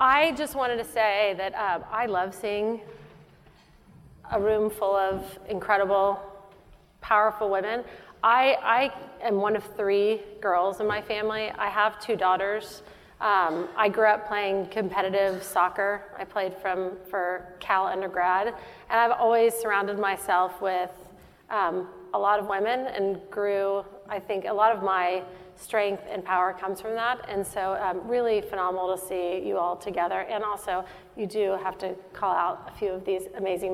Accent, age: American, 30-49